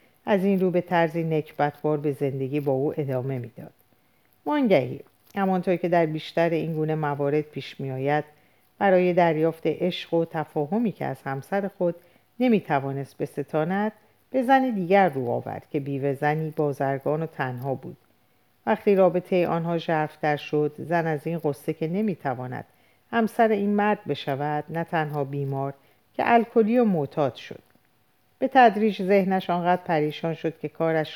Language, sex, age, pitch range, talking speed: Persian, female, 50-69, 140-180 Hz, 150 wpm